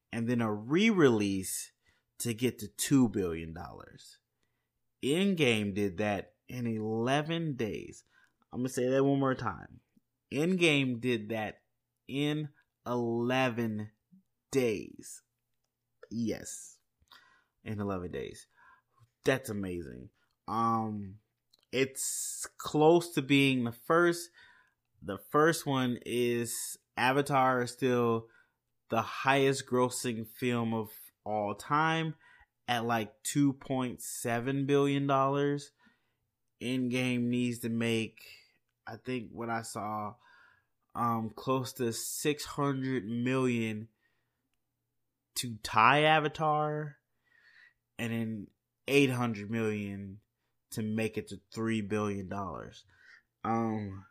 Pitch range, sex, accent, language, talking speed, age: 110-135 Hz, male, American, English, 100 wpm, 30-49